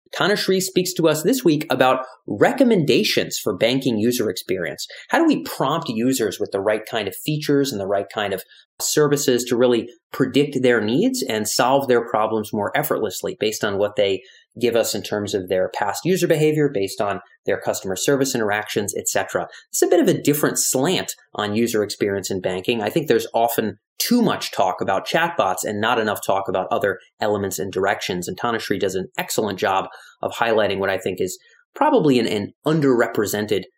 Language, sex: English, male